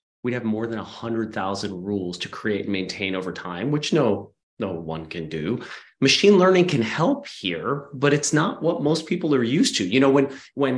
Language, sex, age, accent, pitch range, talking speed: English, male, 30-49, American, 105-135 Hz, 200 wpm